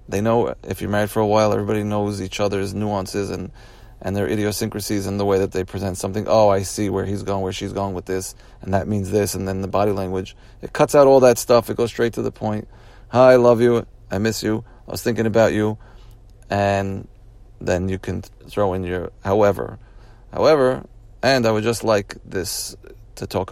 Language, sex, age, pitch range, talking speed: English, male, 30-49, 100-115 Hz, 215 wpm